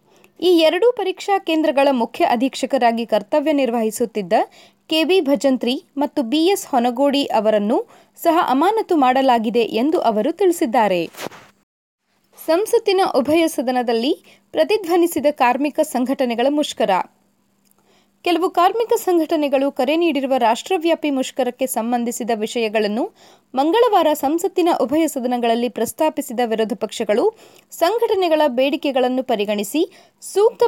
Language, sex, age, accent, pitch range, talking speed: Kannada, female, 20-39, native, 245-340 Hz, 90 wpm